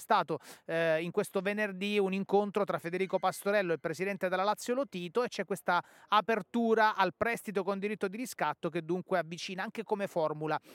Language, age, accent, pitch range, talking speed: Italian, 30-49, native, 175-215 Hz, 180 wpm